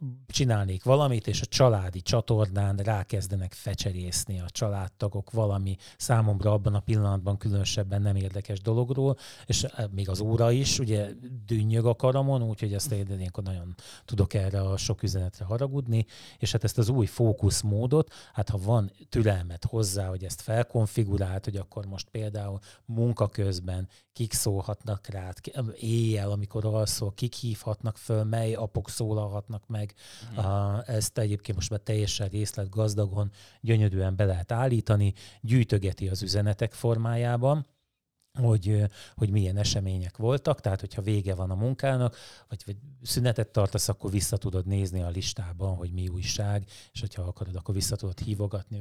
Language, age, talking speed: Hungarian, 30-49, 140 wpm